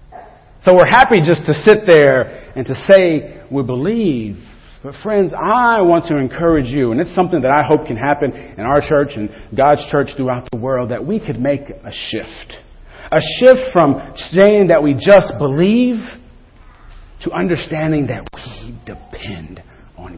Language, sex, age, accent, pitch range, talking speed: English, male, 40-59, American, 105-150 Hz, 165 wpm